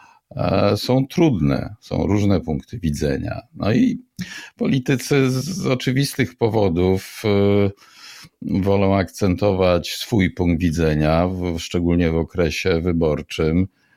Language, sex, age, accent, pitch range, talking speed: Polish, male, 50-69, native, 90-110 Hz, 90 wpm